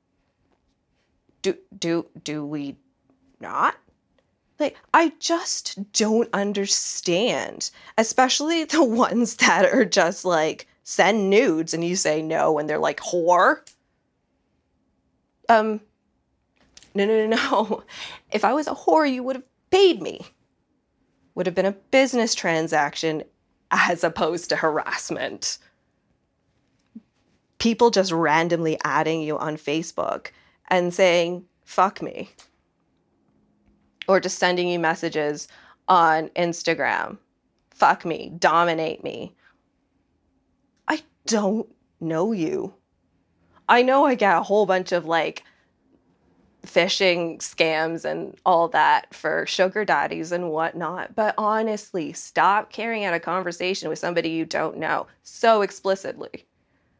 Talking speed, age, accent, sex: 115 wpm, 20-39, American, female